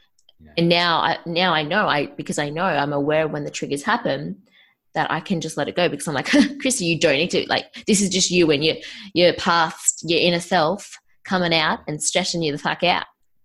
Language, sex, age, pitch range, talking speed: English, female, 20-39, 155-190 Hz, 230 wpm